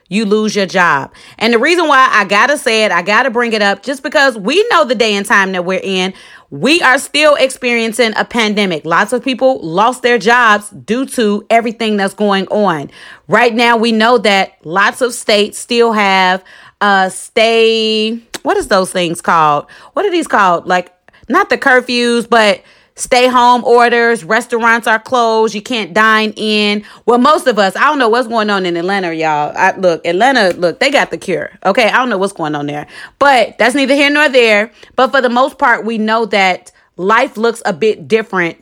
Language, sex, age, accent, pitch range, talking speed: English, female, 30-49, American, 190-245 Hz, 205 wpm